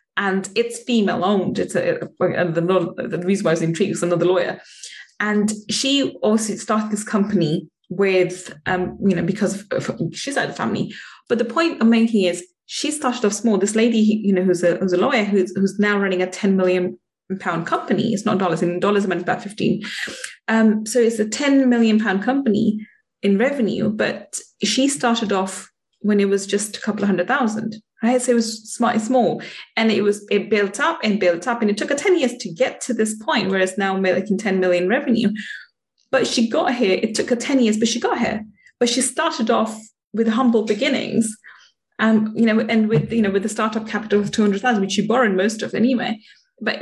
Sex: female